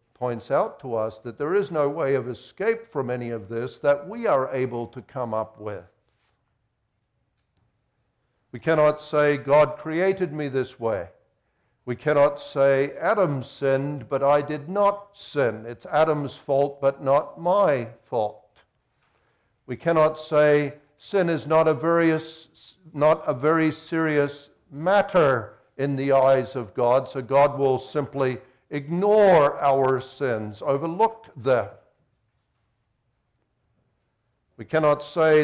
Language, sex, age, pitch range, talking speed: English, male, 60-79, 120-150 Hz, 130 wpm